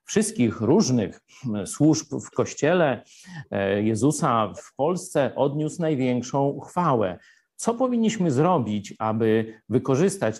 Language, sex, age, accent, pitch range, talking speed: Polish, male, 50-69, native, 125-175 Hz, 90 wpm